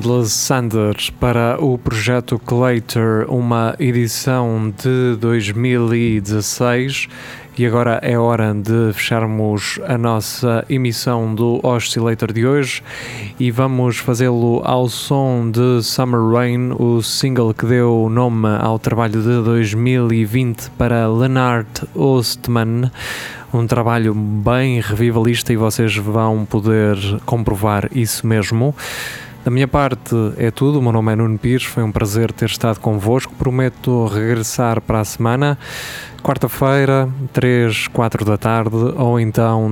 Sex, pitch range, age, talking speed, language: male, 110-125 Hz, 20-39, 125 wpm, Portuguese